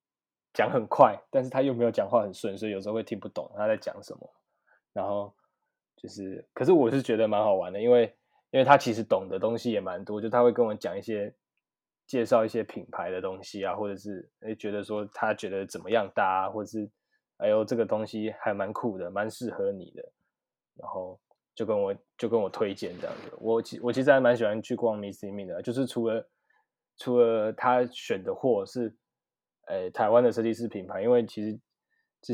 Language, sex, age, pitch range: Chinese, male, 20-39, 105-120 Hz